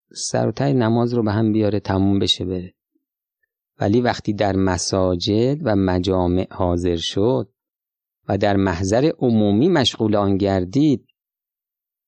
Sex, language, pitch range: male, Persian, 105-130 Hz